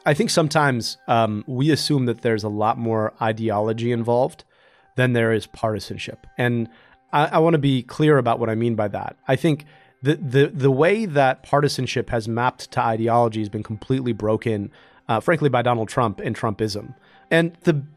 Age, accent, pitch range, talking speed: 30-49, American, 120-155 Hz, 185 wpm